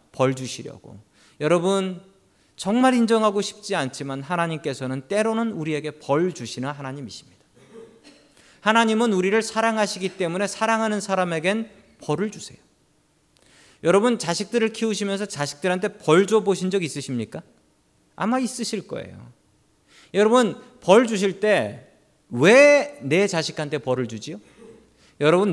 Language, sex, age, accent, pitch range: Korean, male, 40-59, native, 145-210 Hz